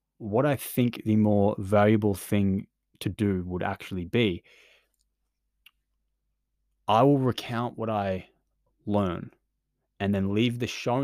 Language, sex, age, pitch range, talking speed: English, male, 20-39, 100-115 Hz, 125 wpm